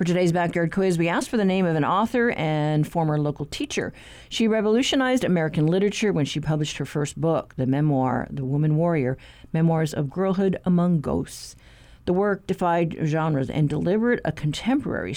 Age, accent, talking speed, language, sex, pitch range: 50-69, American, 175 wpm, English, female, 150-200 Hz